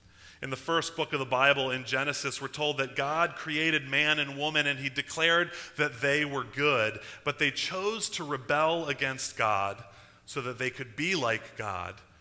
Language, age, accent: English, 30-49, American